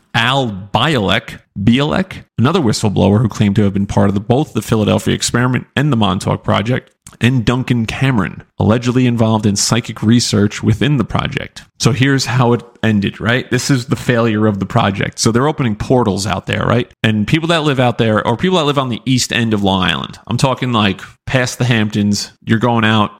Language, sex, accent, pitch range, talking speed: English, male, American, 105-130 Hz, 195 wpm